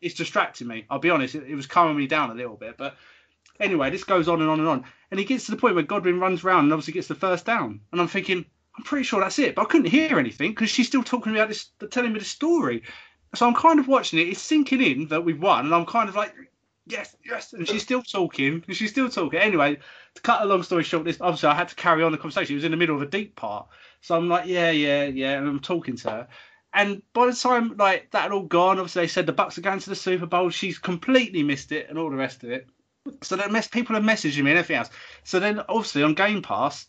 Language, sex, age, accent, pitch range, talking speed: English, male, 20-39, British, 155-210 Hz, 280 wpm